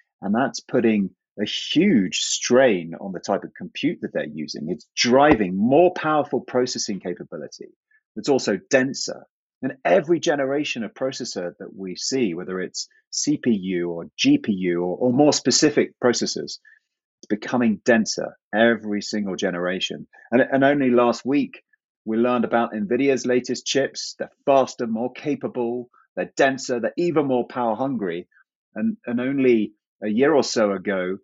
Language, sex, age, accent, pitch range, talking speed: English, male, 30-49, British, 105-160 Hz, 150 wpm